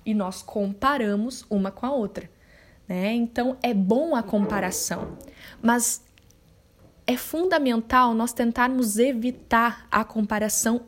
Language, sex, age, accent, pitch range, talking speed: Portuguese, female, 10-29, Brazilian, 215-275 Hz, 115 wpm